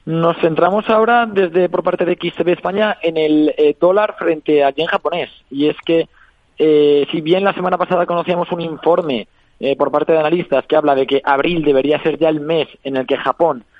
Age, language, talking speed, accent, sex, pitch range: 20-39, Spanish, 210 wpm, Spanish, male, 140-175 Hz